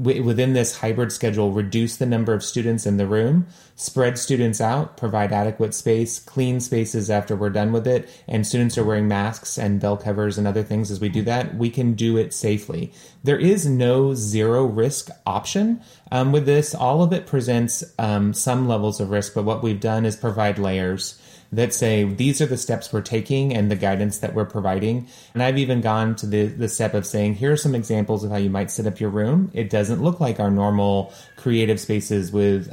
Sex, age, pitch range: male, 30-49, 105-130 Hz